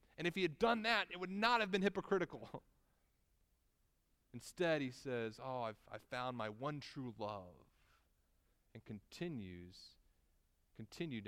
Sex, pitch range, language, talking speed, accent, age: male, 100-140 Hz, English, 140 wpm, American, 30-49